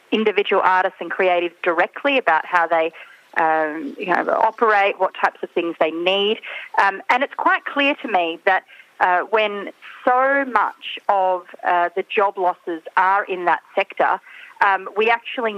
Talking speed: 160 wpm